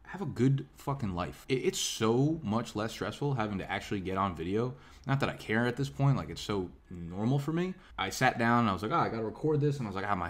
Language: English